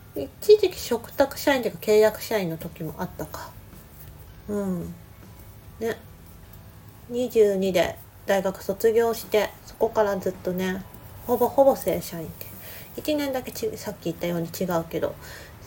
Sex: female